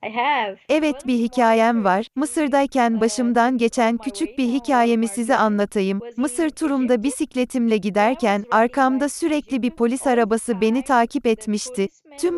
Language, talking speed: Turkish, 120 wpm